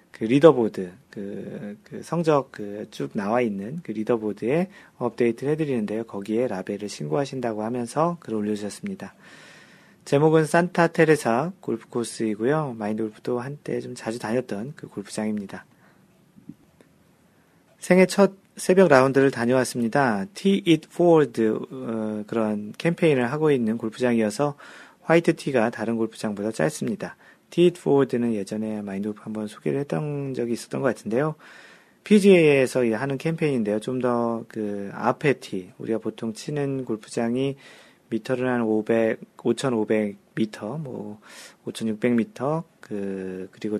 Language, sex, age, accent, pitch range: Korean, male, 40-59, native, 110-145 Hz